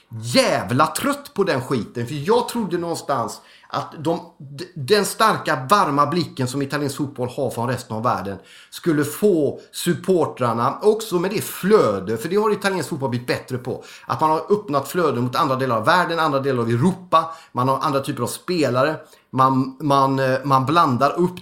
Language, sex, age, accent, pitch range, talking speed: Swedish, male, 30-49, native, 130-175 Hz, 180 wpm